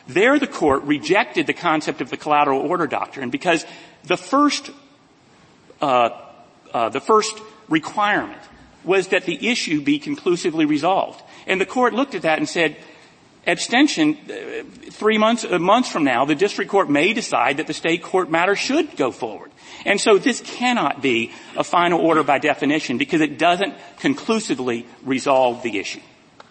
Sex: male